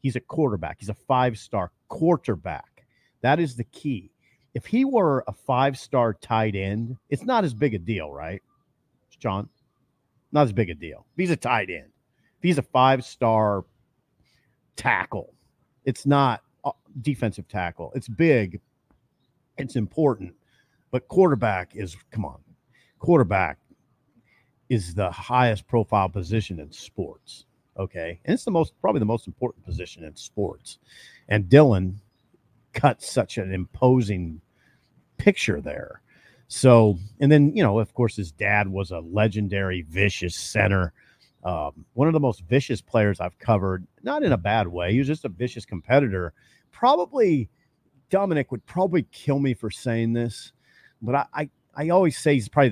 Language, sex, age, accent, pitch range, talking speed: English, male, 50-69, American, 95-135 Hz, 150 wpm